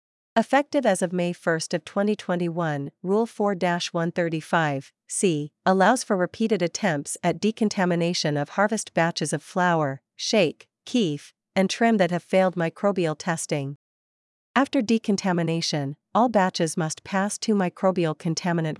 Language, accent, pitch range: English, American, 165-205 Hz